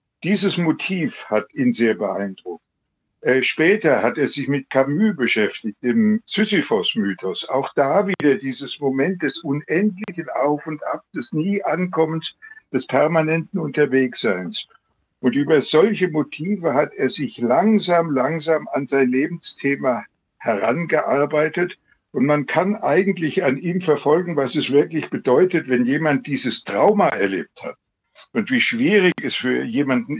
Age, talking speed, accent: 60-79, 135 wpm, German